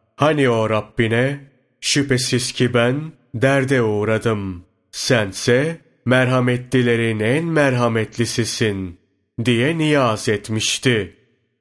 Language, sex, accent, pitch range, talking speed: Turkish, male, native, 110-140 Hz, 80 wpm